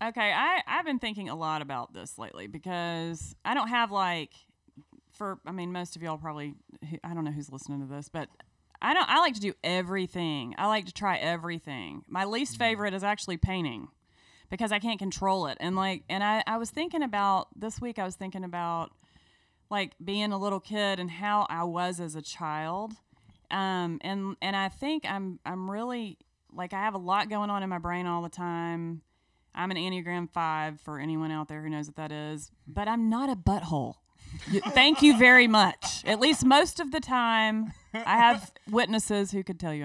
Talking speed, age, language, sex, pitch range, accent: 205 wpm, 30-49, English, female, 170-215 Hz, American